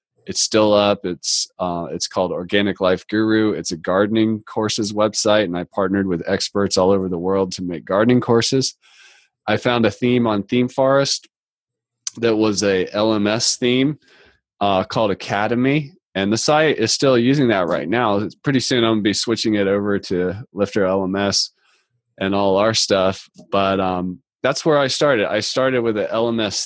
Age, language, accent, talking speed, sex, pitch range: 20-39, English, American, 180 wpm, male, 95-120 Hz